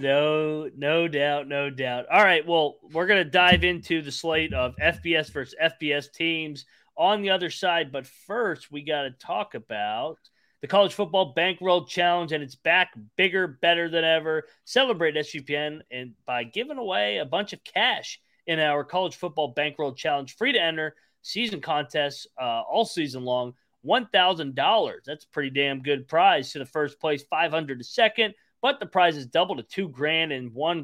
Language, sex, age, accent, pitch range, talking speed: English, male, 30-49, American, 140-180 Hz, 180 wpm